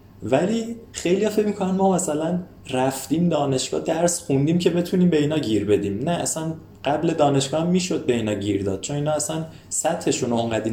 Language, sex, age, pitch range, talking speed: Persian, male, 20-39, 110-155 Hz, 175 wpm